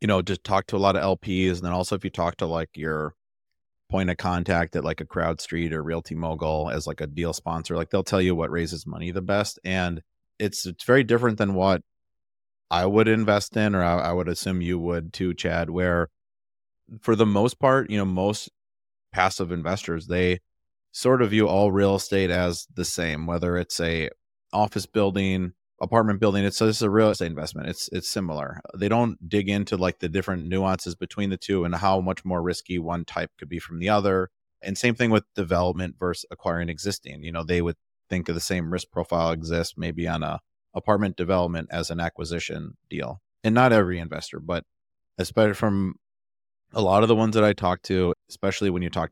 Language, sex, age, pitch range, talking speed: English, male, 30-49, 85-100 Hz, 210 wpm